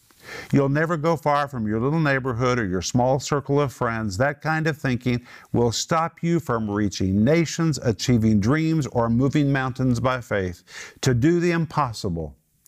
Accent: American